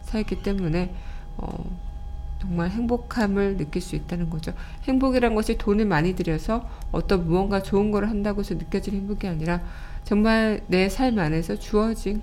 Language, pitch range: Korean, 170-210 Hz